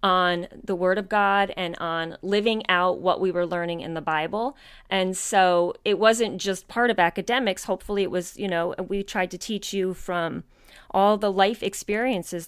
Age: 30-49